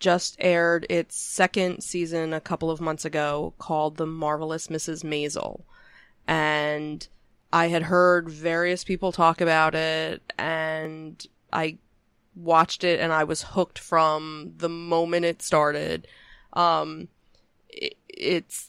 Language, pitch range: English, 160-180 Hz